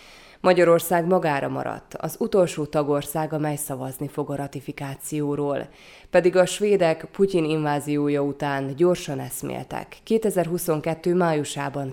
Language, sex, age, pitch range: Hungarian, female, 20-39, 140-165 Hz